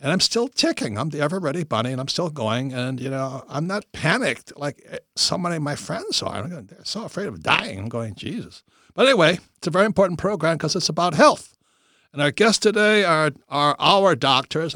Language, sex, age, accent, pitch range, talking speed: English, male, 60-79, American, 120-150 Hz, 215 wpm